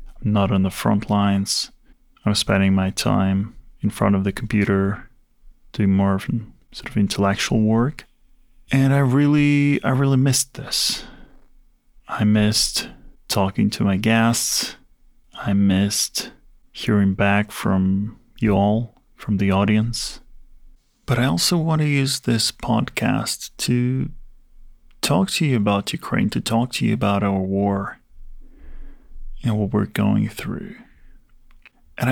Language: English